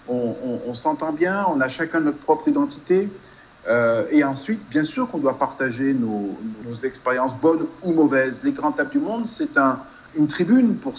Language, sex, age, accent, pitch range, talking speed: French, male, 50-69, French, 135-210 Hz, 190 wpm